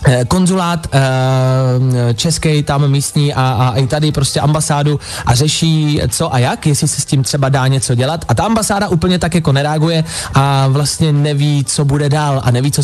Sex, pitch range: male, 140-165 Hz